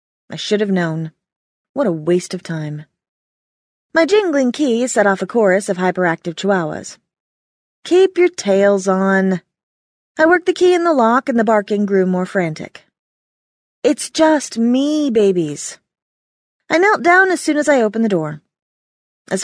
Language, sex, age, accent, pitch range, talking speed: English, female, 30-49, American, 180-265 Hz, 155 wpm